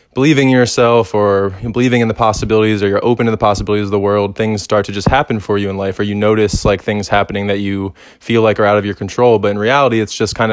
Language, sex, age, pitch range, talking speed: English, male, 20-39, 105-120 Hz, 270 wpm